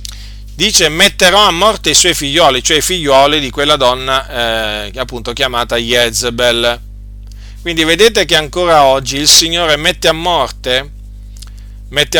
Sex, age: male, 40-59